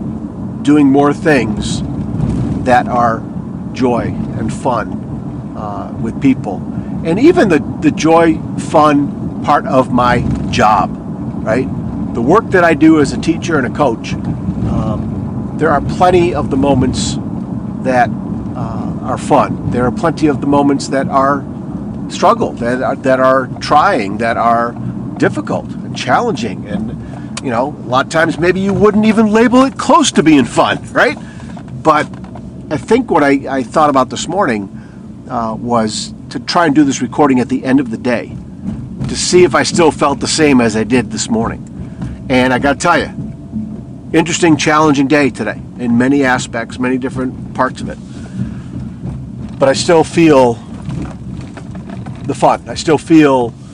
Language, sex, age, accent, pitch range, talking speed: English, male, 50-69, American, 125-165 Hz, 160 wpm